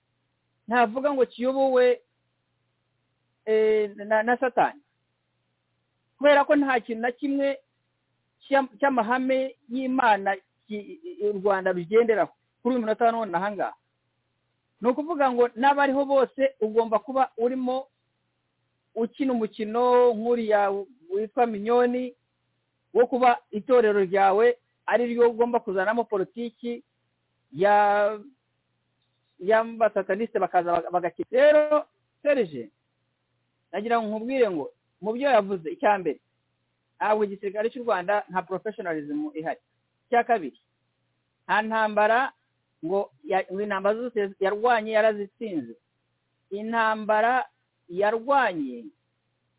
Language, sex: English, male